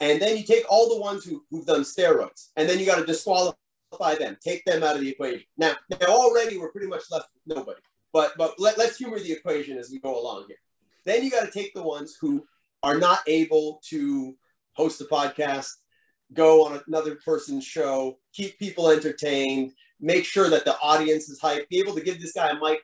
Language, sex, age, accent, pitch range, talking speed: English, male, 30-49, American, 155-205 Hz, 210 wpm